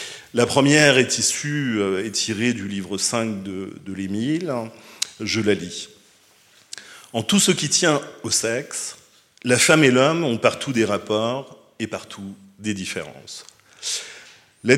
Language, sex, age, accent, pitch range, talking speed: French, male, 40-59, French, 105-150 Hz, 140 wpm